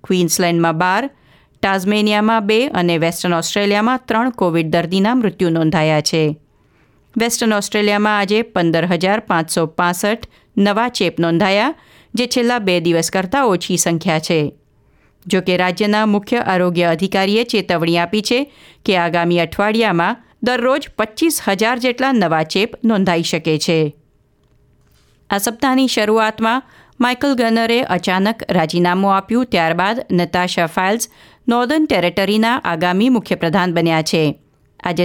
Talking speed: 115 wpm